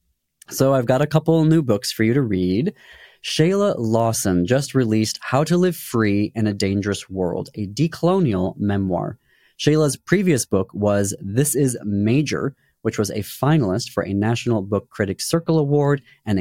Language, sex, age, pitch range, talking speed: English, male, 30-49, 100-145 Hz, 170 wpm